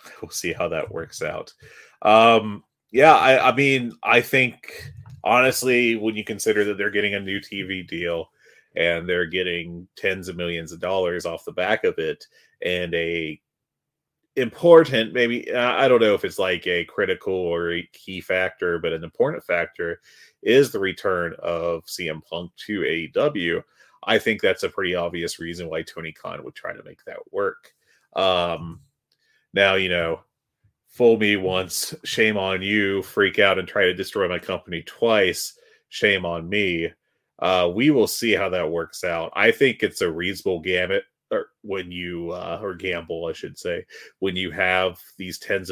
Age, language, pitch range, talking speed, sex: 30-49, English, 90-130 Hz, 170 wpm, male